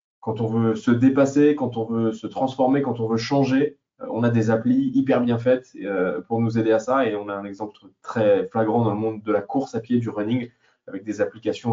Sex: male